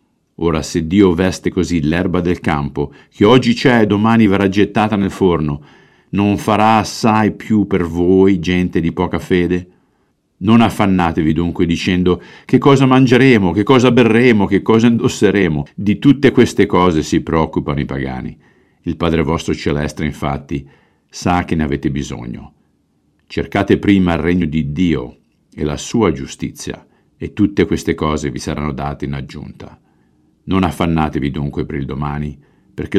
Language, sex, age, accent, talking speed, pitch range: Italian, male, 50-69, native, 155 wpm, 75-100 Hz